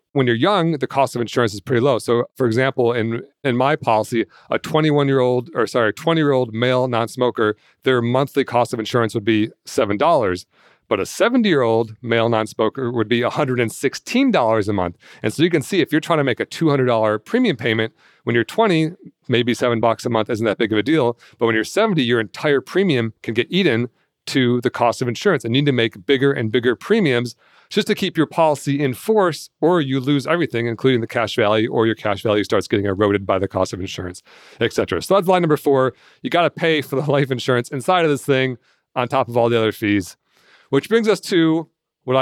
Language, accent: English, American